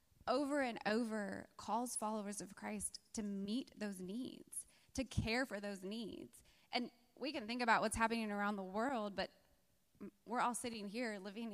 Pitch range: 215-255 Hz